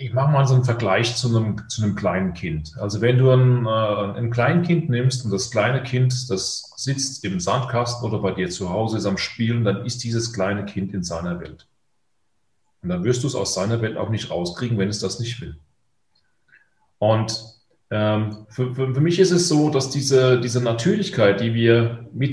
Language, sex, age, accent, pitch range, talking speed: German, male, 30-49, German, 110-140 Hz, 200 wpm